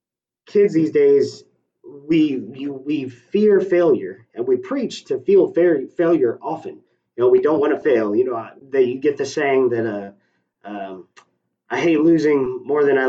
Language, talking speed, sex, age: English, 185 wpm, male, 30-49